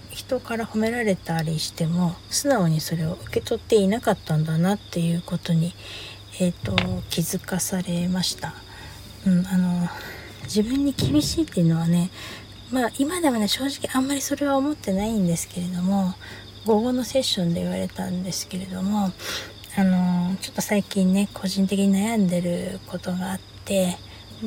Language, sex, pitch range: Japanese, female, 170-200 Hz